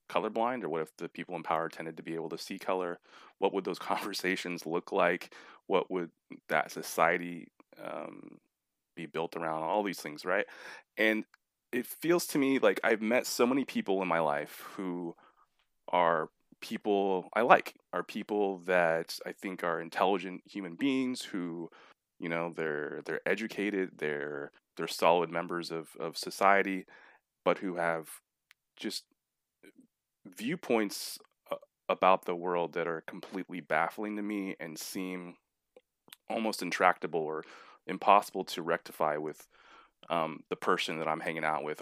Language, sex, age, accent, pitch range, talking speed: English, male, 20-39, American, 85-105 Hz, 150 wpm